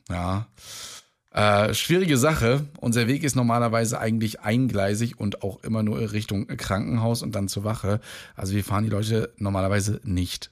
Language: German